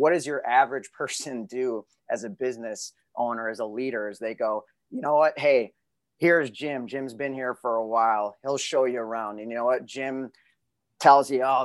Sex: male